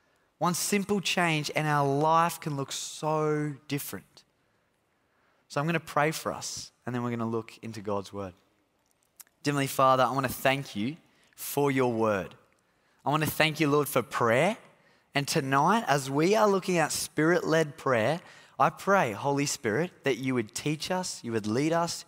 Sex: male